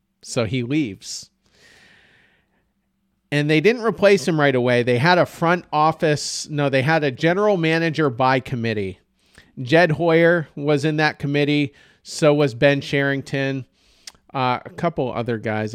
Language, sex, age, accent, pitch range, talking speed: English, male, 40-59, American, 125-160 Hz, 145 wpm